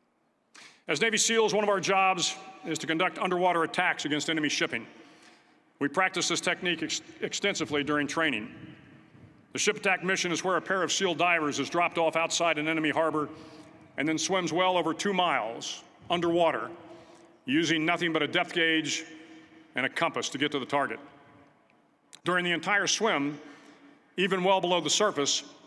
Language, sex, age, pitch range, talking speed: English, male, 50-69, 150-180 Hz, 165 wpm